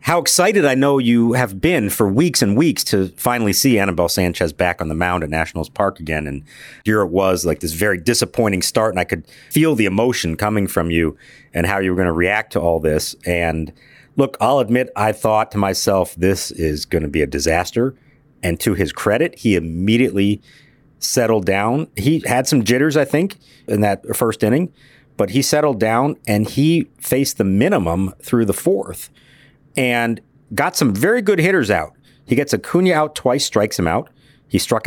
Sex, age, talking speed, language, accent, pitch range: male, 40-59, 195 wpm, English, American, 95-135 Hz